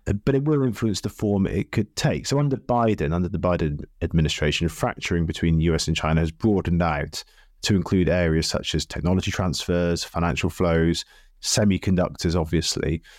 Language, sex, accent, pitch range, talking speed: English, male, British, 80-110 Hz, 160 wpm